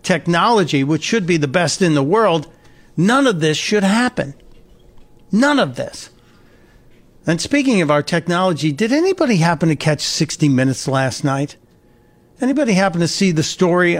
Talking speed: 160 wpm